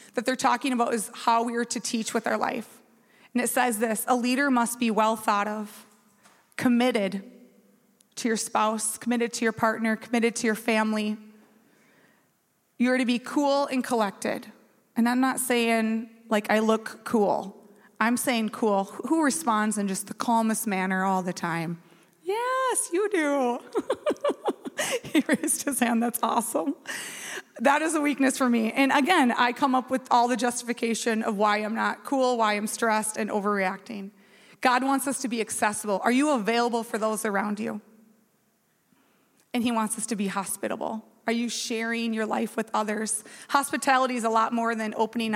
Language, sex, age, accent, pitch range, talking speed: English, female, 20-39, American, 215-245 Hz, 175 wpm